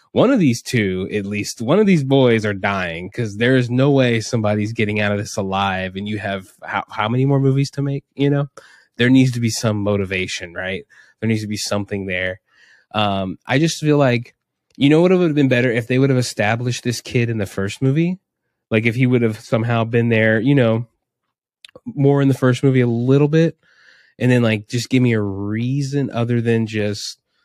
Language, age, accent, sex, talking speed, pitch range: English, 20-39, American, male, 220 wpm, 100-125 Hz